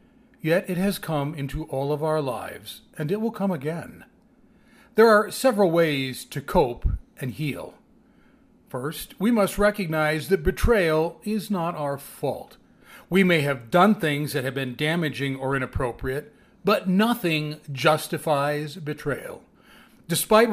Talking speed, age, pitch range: 140 wpm, 40-59, 150-205 Hz